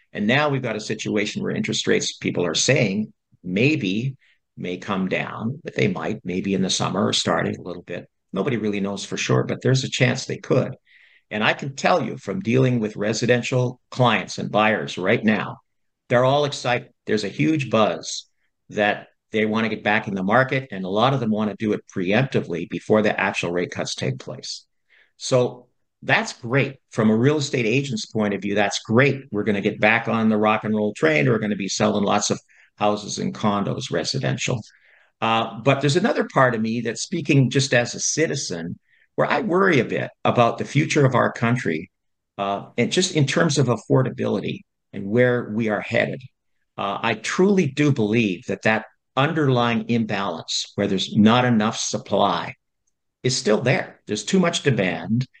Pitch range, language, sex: 105-130 Hz, English, male